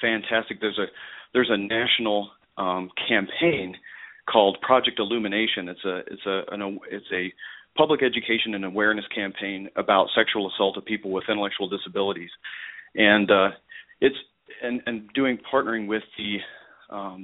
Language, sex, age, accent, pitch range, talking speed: English, male, 40-59, American, 95-115 Hz, 140 wpm